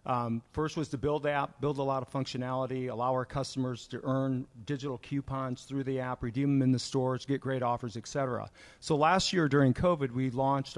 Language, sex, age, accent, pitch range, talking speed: English, male, 40-59, American, 125-145 Hz, 215 wpm